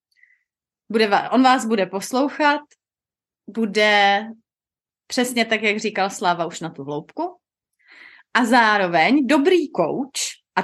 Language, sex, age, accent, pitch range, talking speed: Czech, female, 30-49, native, 185-265 Hz, 115 wpm